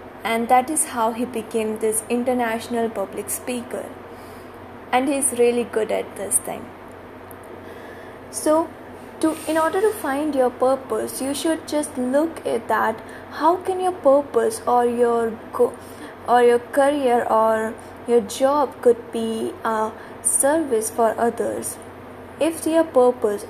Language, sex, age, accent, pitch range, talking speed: English, female, 20-39, Indian, 225-260 Hz, 135 wpm